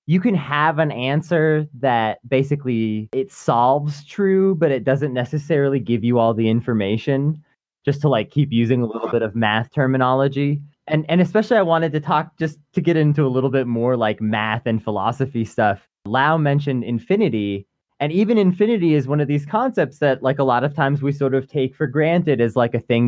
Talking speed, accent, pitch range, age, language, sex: 200 wpm, American, 120-160 Hz, 20-39, English, male